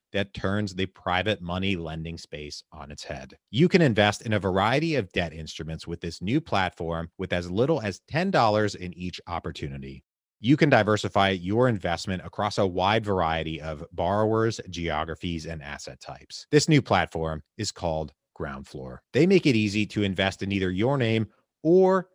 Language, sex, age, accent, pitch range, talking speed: English, male, 30-49, American, 80-115 Hz, 170 wpm